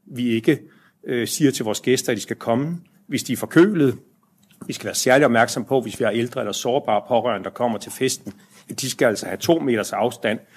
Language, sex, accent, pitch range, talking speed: Danish, male, native, 110-155 Hz, 220 wpm